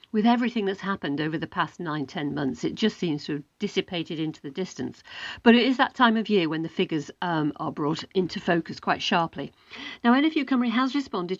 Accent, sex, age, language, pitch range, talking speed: British, female, 50-69, English, 165-225 Hz, 215 wpm